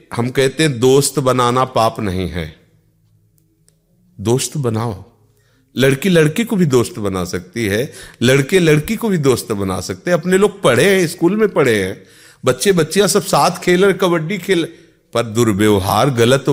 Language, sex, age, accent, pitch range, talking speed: Hindi, male, 40-59, native, 115-155 Hz, 165 wpm